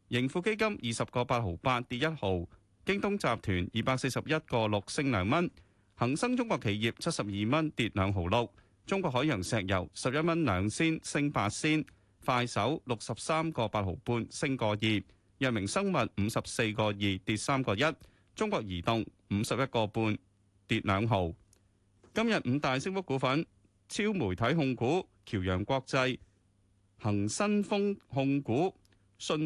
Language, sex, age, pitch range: Chinese, male, 30-49, 100-140 Hz